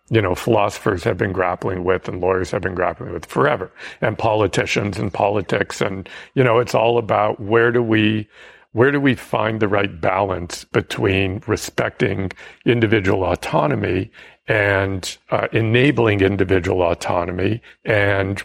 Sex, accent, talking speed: male, American, 145 wpm